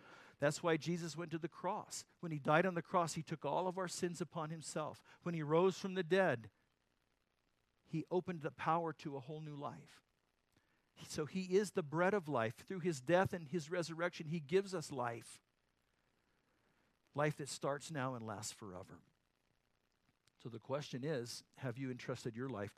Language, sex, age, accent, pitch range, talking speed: English, male, 50-69, American, 125-165 Hz, 180 wpm